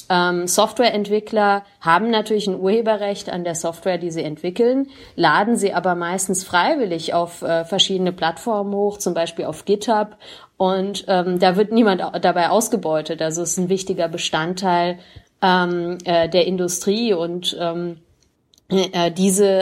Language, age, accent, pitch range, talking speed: German, 30-49, German, 170-195 Hz, 120 wpm